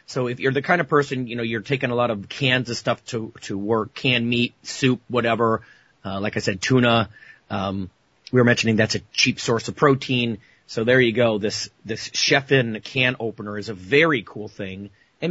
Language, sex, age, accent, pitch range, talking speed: English, male, 30-49, American, 110-135 Hz, 210 wpm